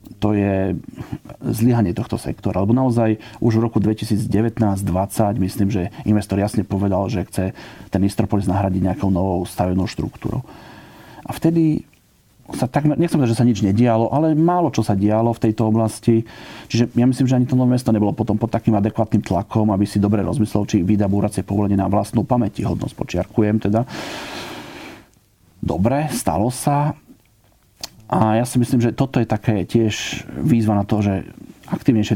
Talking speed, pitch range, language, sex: 160 wpm, 100-115 Hz, Slovak, male